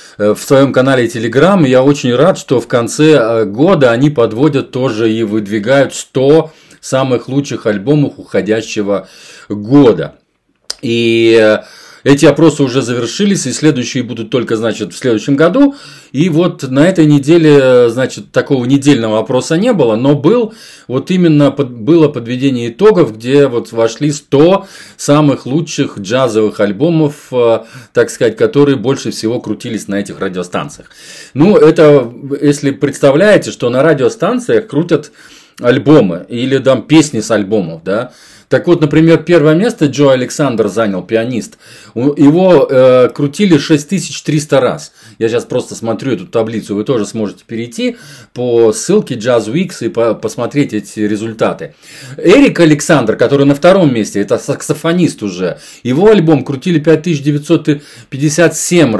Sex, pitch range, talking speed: male, 115-155 Hz, 135 wpm